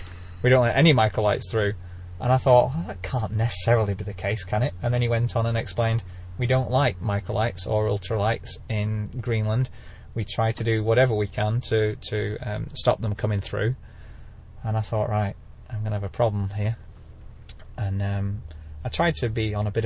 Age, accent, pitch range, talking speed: 30-49, British, 100-115 Hz, 200 wpm